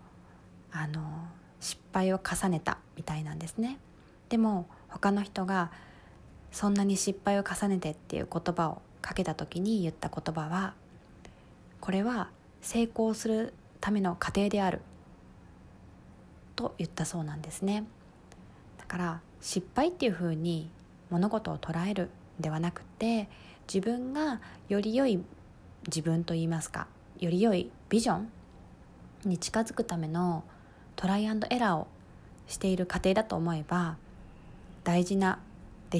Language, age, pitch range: Japanese, 20-39, 160-200 Hz